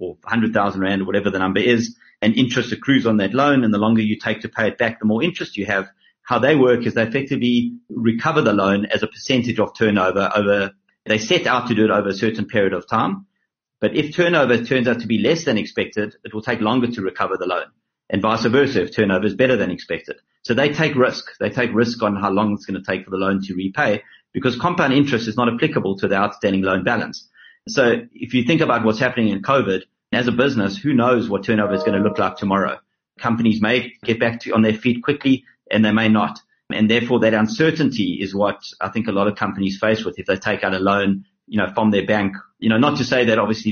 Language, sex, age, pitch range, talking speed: English, male, 30-49, 100-120 Hz, 245 wpm